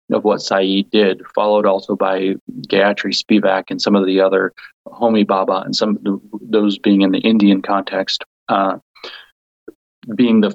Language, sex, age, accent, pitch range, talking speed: English, male, 30-49, American, 95-110 Hz, 160 wpm